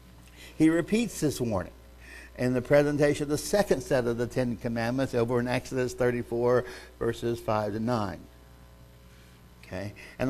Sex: male